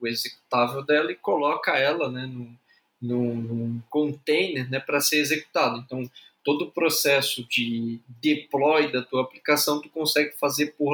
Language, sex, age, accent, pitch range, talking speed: Portuguese, male, 20-39, Brazilian, 120-150 Hz, 145 wpm